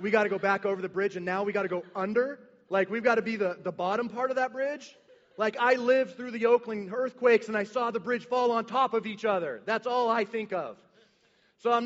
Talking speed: 265 wpm